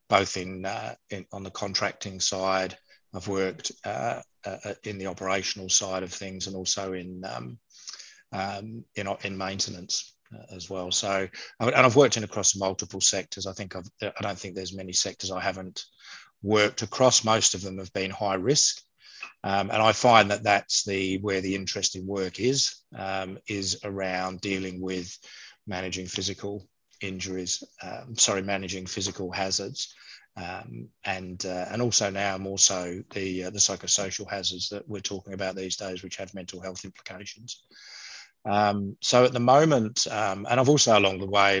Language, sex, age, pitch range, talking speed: English, male, 30-49, 95-100 Hz, 170 wpm